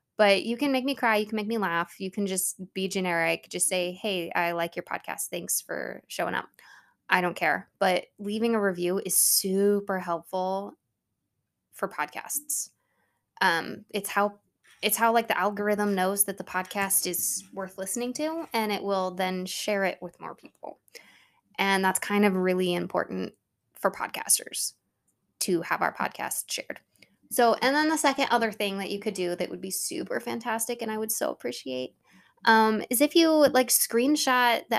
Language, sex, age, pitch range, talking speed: English, female, 20-39, 185-220 Hz, 180 wpm